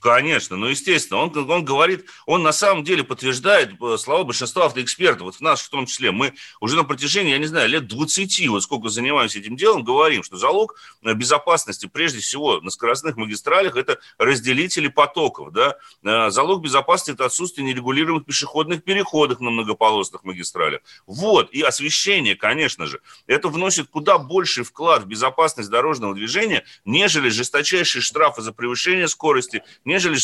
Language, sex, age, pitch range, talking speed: Russian, male, 30-49, 120-170 Hz, 155 wpm